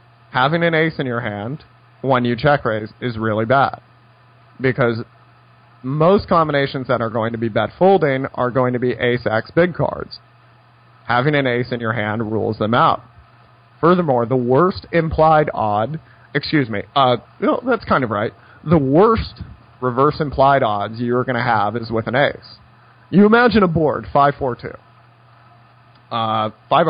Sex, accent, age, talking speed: male, American, 30-49, 160 wpm